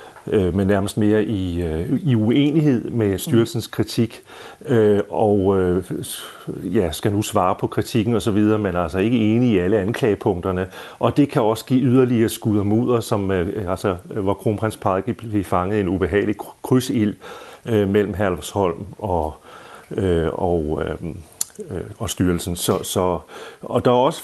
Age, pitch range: 40-59, 95-115 Hz